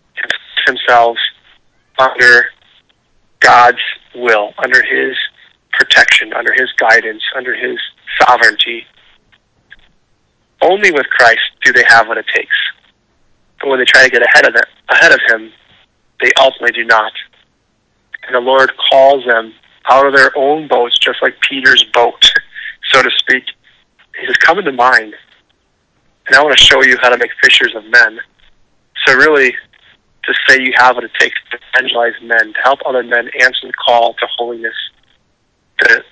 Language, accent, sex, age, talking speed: English, American, male, 30-49, 155 wpm